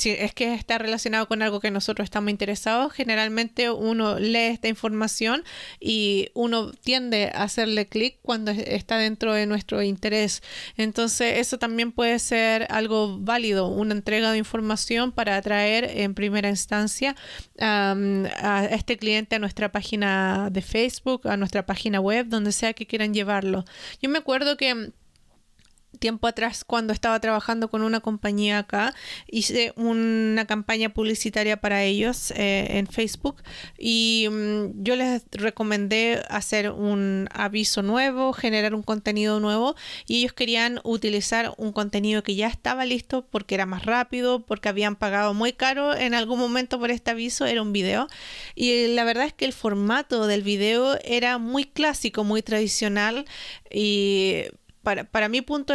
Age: 20-39